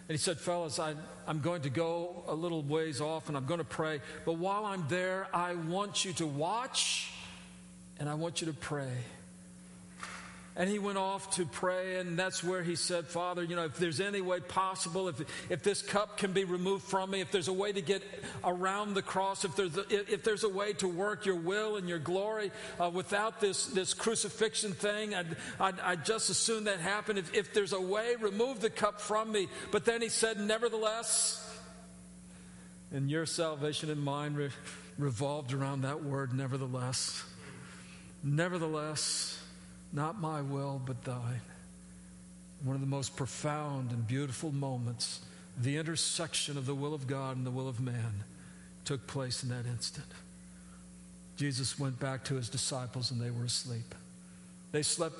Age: 50-69